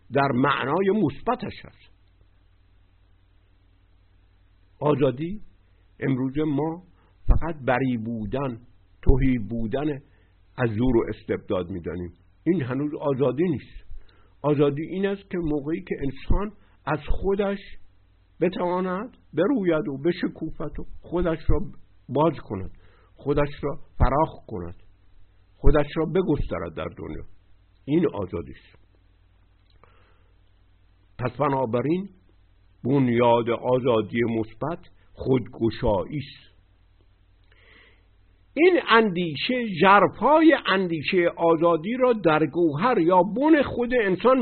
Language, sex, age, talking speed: Persian, male, 60-79, 95 wpm